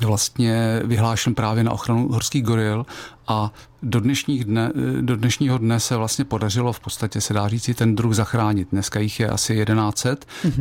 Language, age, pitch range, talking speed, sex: Czech, 40-59, 110-125 Hz, 155 wpm, male